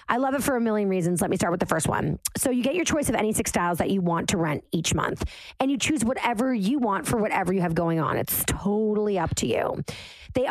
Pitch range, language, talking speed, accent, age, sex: 185-265 Hz, English, 275 wpm, American, 30-49, female